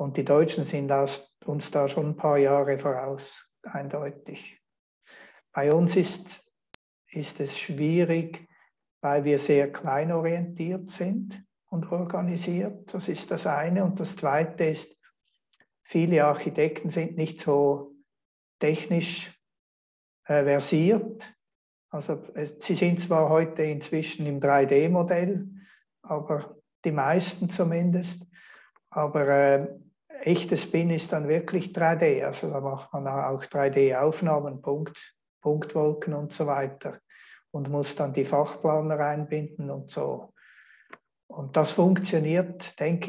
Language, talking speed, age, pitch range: German, 120 wpm, 60-79, 145-175 Hz